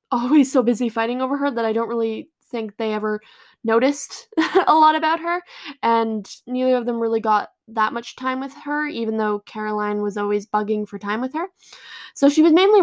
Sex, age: female, 10-29